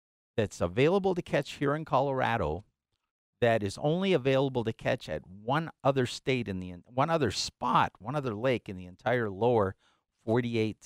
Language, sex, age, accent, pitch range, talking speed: English, male, 50-69, American, 110-140 Hz, 165 wpm